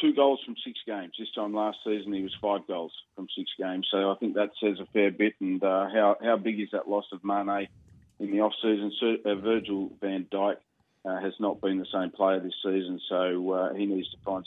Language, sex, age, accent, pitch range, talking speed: English, male, 30-49, Australian, 95-110 Hz, 235 wpm